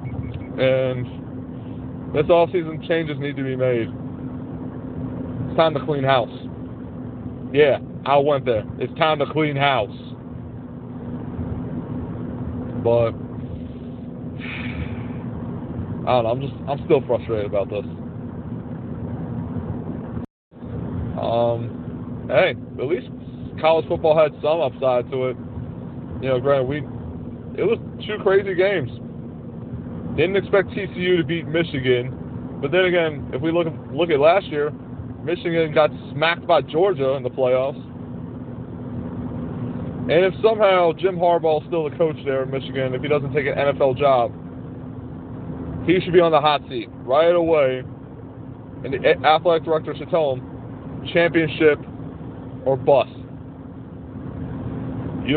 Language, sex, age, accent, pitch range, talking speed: English, male, 40-59, American, 130-165 Hz, 125 wpm